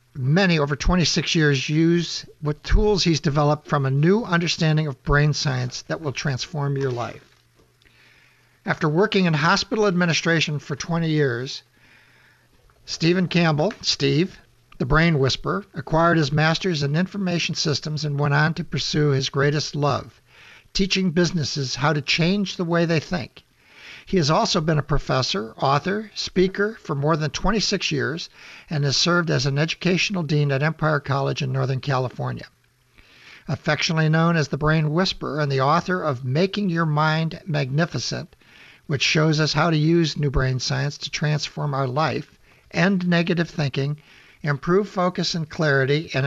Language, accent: English, American